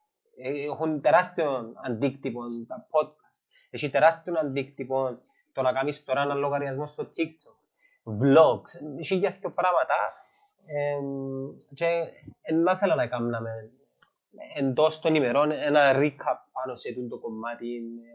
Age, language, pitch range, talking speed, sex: 20-39, Greek, 120-150 Hz, 130 wpm, male